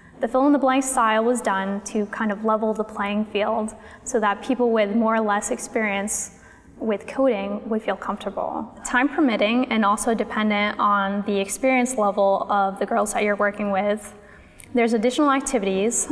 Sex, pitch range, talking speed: female, 205-250 Hz, 175 wpm